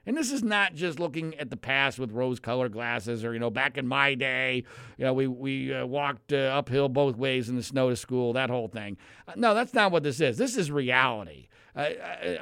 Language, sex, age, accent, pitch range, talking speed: English, male, 50-69, American, 125-170 Hz, 230 wpm